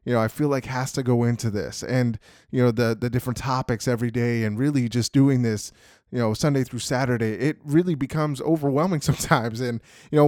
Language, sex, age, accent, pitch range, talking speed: English, male, 20-39, American, 120-140 Hz, 215 wpm